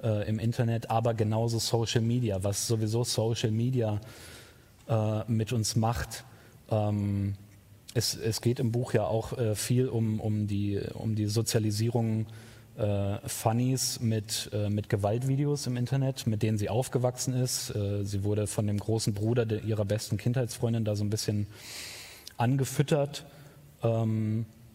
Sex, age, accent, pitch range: male, 30-49, German, 110-125 Hz